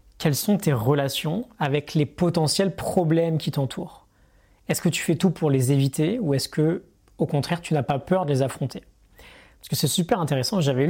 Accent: French